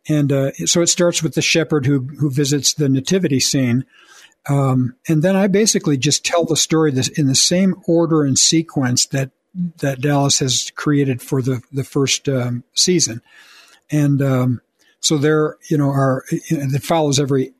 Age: 60-79